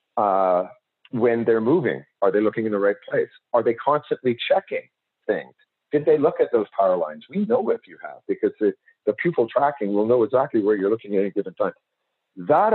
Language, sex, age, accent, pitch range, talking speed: English, male, 50-69, American, 110-145 Hz, 215 wpm